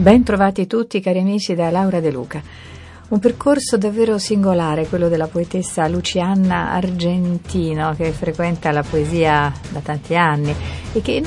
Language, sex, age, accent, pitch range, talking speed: Italian, female, 50-69, native, 165-210 Hz, 150 wpm